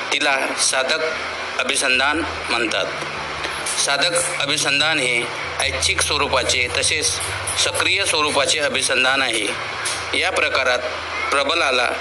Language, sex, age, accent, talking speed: Marathi, male, 50-69, native, 75 wpm